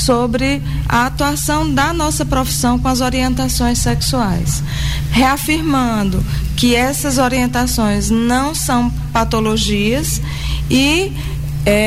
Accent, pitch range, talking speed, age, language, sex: Brazilian, 130-185 Hz, 90 wpm, 20-39, Portuguese, female